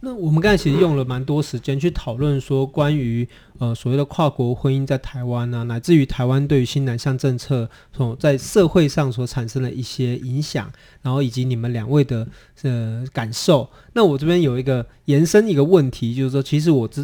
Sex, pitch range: male, 125-155 Hz